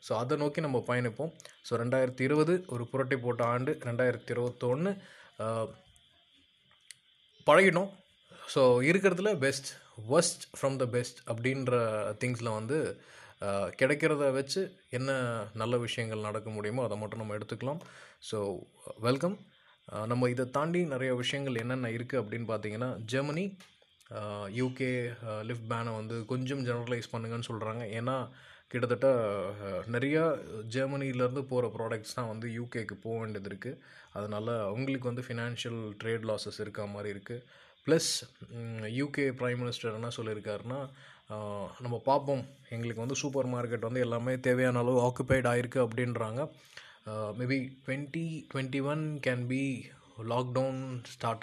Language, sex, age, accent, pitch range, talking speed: Tamil, male, 20-39, native, 115-140 Hz, 115 wpm